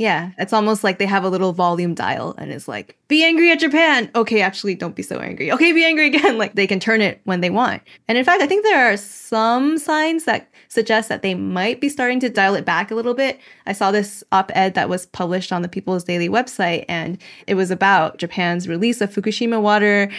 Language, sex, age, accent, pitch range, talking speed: English, female, 20-39, American, 180-225 Hz, 235 wpm